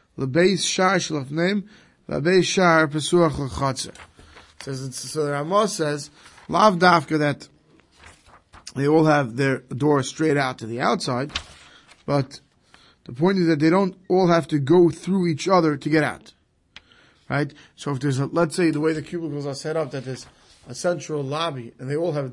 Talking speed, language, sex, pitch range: 165 wpm, English, male, 135-160 Hz